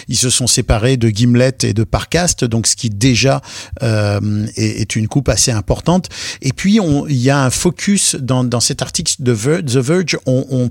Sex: male